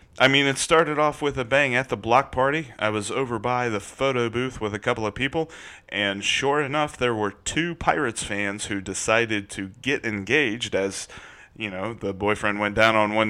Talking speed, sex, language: 210 wpm, male, English